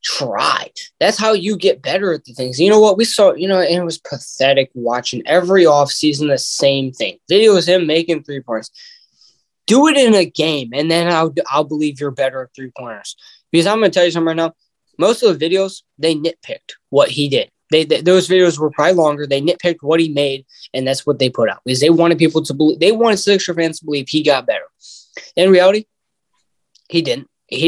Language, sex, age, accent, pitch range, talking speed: English, male, 20-39, American, 145-185 Hz, 220 wpm